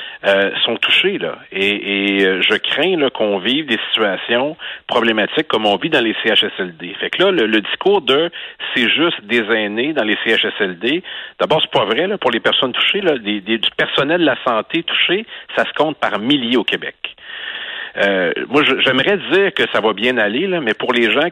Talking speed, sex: 210 wpm, male